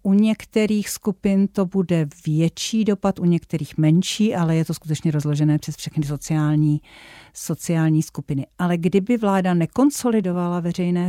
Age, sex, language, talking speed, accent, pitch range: 50-69, female, Czech, 135 wpm, native, 170-205 Hz